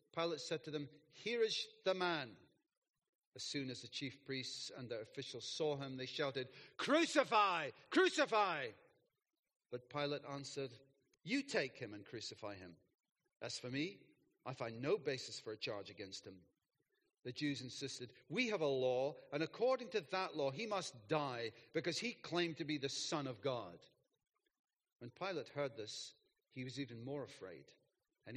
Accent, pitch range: British, 125-160 Hz